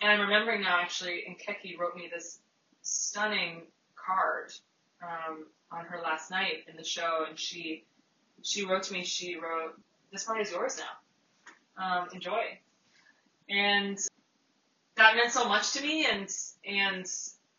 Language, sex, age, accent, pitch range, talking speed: English, female, 20-39, American, 170-210 Hz, 150 wpm